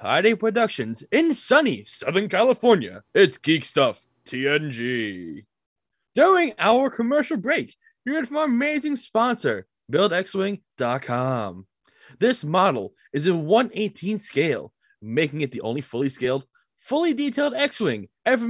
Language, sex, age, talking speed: English, male, 20-39, 120 wpm